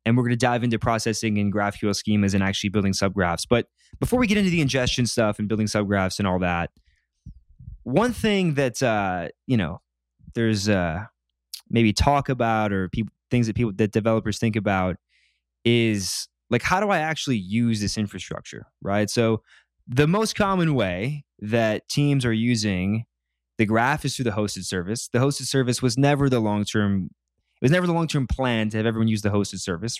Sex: male